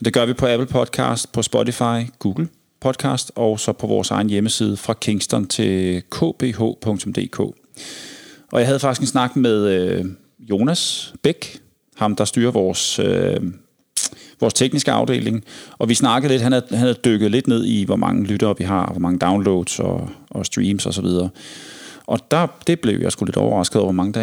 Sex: male